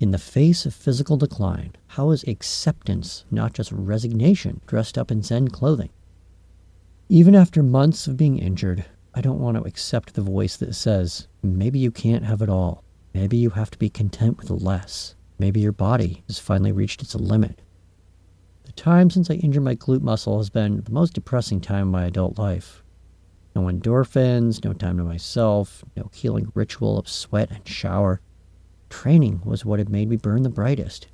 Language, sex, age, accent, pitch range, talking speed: English, male, 50-69, American, 90-115 Hz, 180 wpm